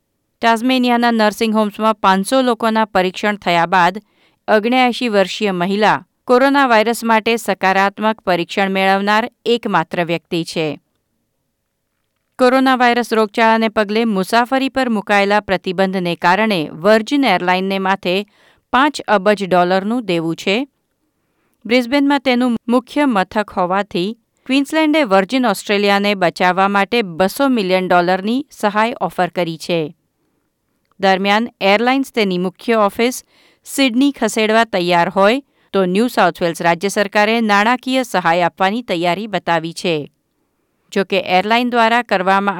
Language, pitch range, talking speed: Gujarati, 185-230 Hz, 110 wpm